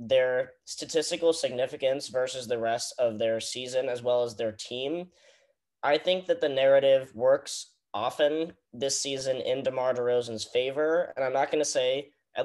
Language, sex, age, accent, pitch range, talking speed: English, male, 10-29, American, 120-145 Hz, 165 wpm